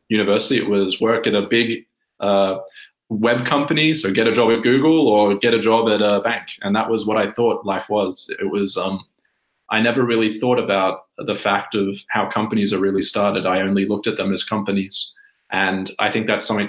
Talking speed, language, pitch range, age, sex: 210 wpm, English, 100-125 Hz, 20-39, male